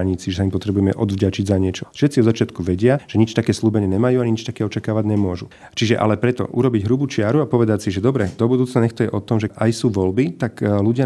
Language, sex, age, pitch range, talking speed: Slovak, male, 30-49, 100-120 Hz, 220 wpm